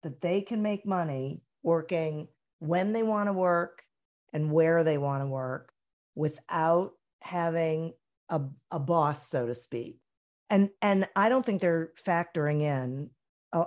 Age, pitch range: 40-59, 130-175 Hz